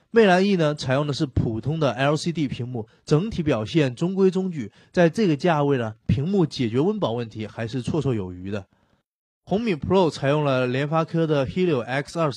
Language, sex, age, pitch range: Chinese, male, 20-39, 120-165 Hz